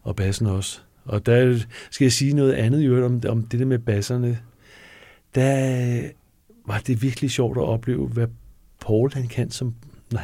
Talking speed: 170 wpm